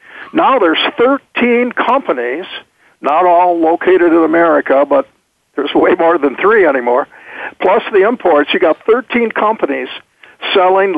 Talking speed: 130 wpm